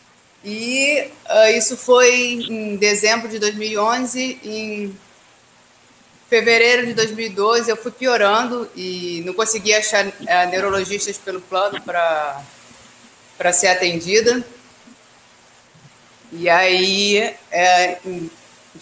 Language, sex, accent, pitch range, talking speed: Portuguese, female, Brazilian, 185-220 Hz, 95 wpm